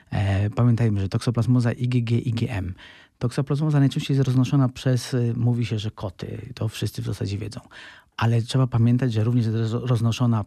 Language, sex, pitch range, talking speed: Polish, male, 110-125 Hz, 150 wpm